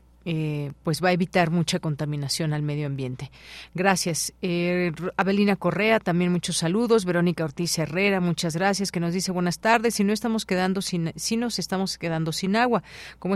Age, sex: 40-59, female